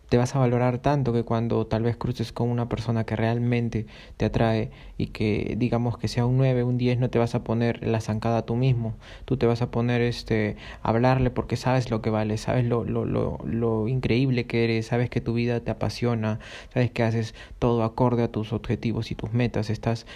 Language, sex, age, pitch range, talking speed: Spanish, male, 20-39, 115-125 Hz, 215 wpm